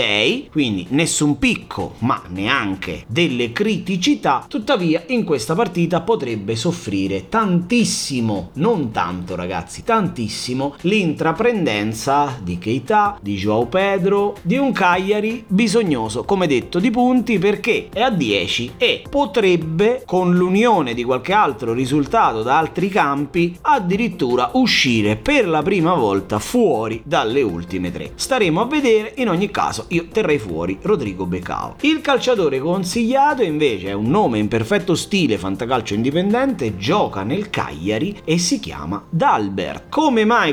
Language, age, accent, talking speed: Italian, 30-49, native, 130 wpm